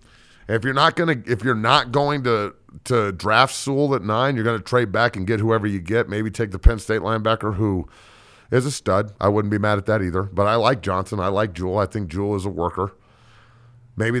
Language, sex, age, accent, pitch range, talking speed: English, male, 40-59, American, 100-115 Hz, 230 wpm